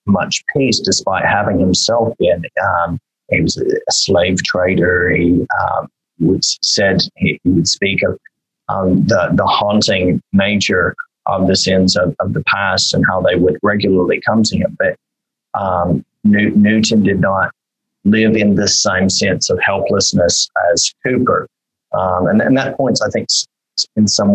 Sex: male